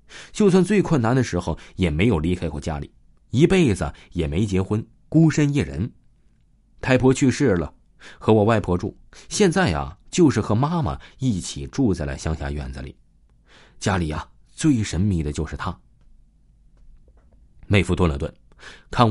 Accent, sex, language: native, male, Chinese